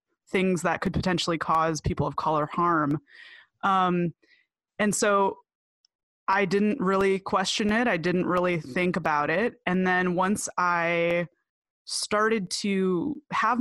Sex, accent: female, American